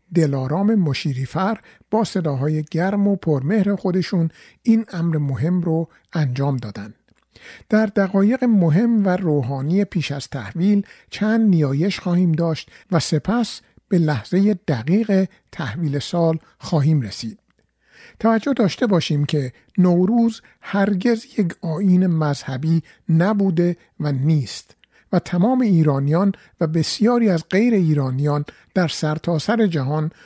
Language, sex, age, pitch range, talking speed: Persian, male, 50-69, 150-200 Hz, 120 wpm